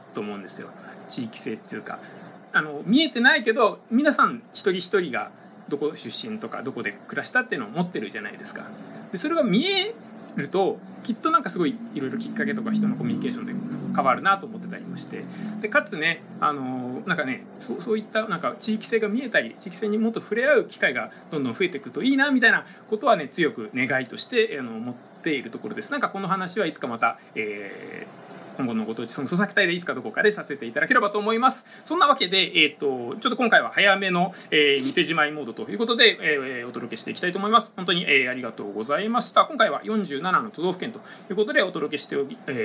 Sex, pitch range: male, 180-235 Hz